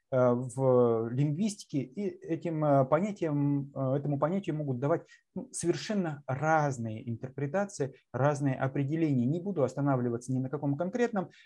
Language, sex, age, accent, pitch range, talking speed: Russian, male, 30-49, native, 130-165 Hz, 110 wpm